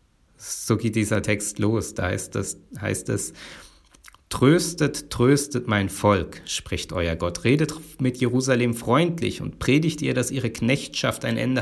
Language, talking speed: German, 150 wpm